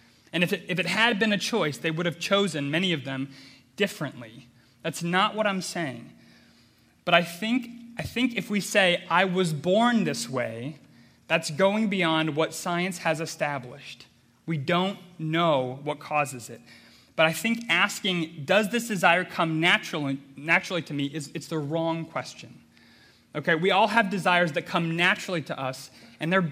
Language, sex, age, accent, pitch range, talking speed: English, male, 30-49, American, 150-205 Hz, 175 wpm